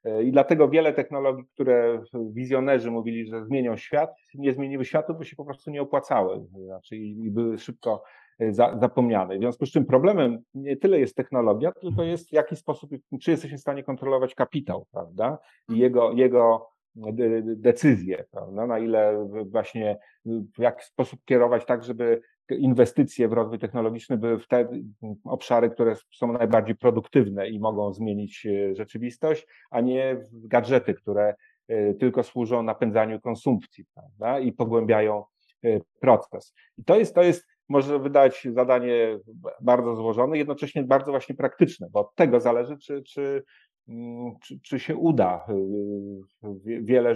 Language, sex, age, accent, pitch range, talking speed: English, male, 40-59, Polish, 115-140 Hz, 145 wpm